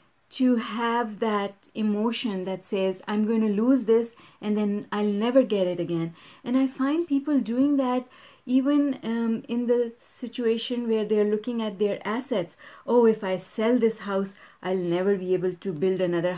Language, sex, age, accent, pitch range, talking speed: English, female, 30-49, Indian, 205-260 Hz, 175 wpm